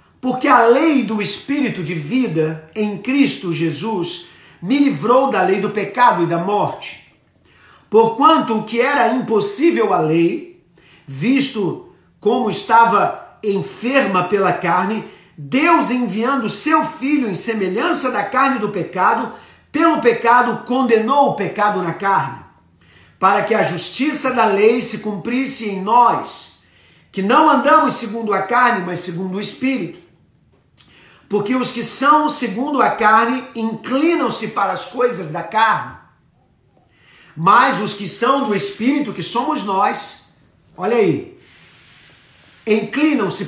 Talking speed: 130 wpm